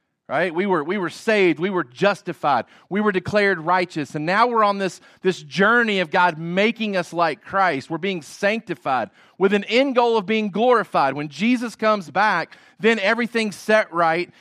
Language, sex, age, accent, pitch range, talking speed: English, male, 40-59, American, 155-205 Hz, 185 wpm